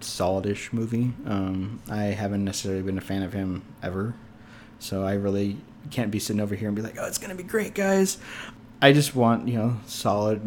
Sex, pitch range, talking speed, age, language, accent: male, 110-150 Hz, 200 wpm, 20-39, English, American